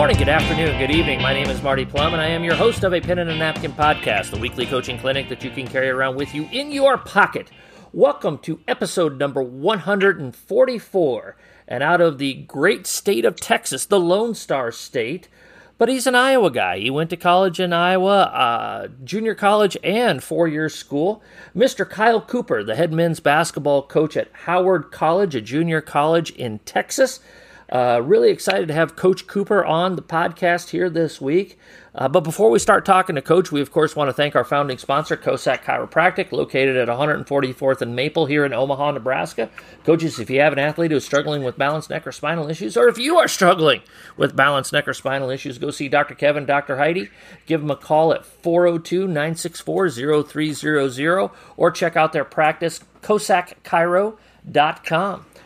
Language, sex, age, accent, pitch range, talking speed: English, male, 40-59, American, 140-185 Hz, 185 wpm